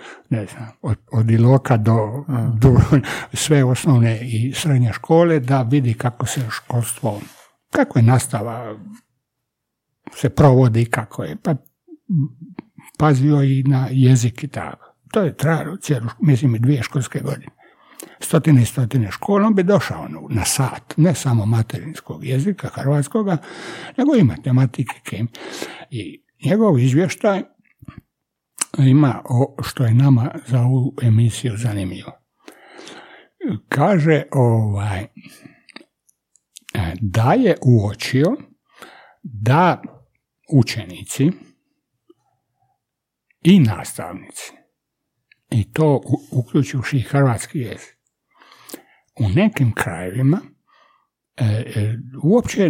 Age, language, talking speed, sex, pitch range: 60-79, Croatian, 100 wpm, male, 115-150 Hz